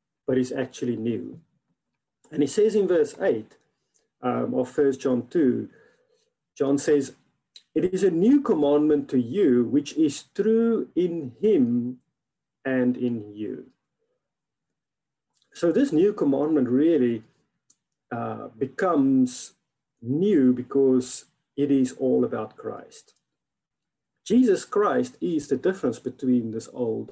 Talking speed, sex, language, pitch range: 115 wpm, male, English, 125-195 Hz